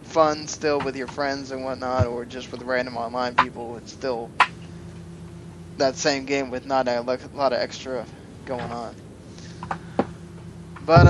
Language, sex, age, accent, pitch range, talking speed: English, male, 10-29, American, 130-180 Hz, 145 wpm